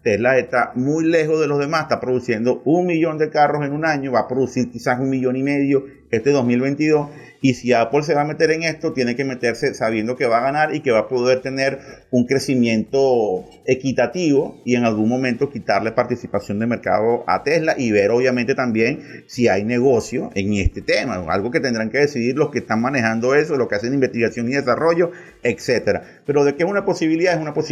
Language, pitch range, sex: Spanish, 120-150 Hz, male